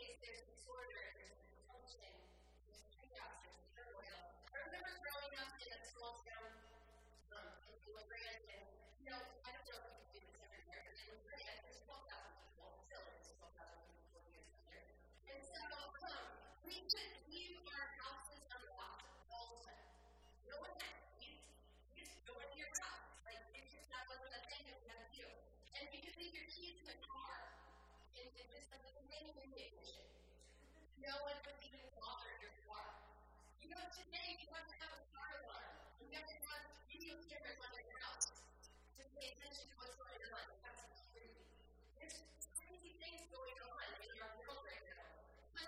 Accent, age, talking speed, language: American, 30-49, 145 wpm, English